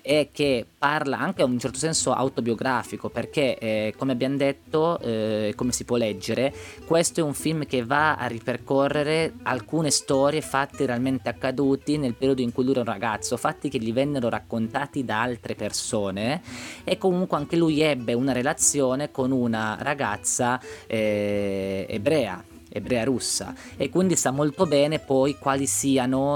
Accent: native